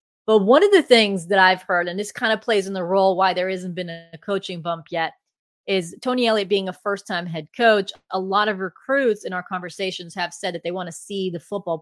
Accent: American